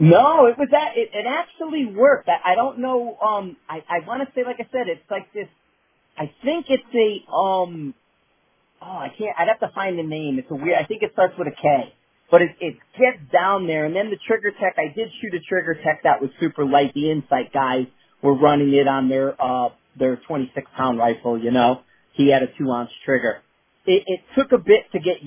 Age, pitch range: 40-59, 140-190 Hz